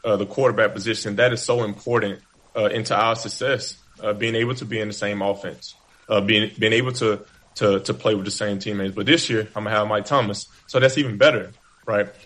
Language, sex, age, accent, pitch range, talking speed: English, male, 20-39, American, 105-115 Hz, 230 wpm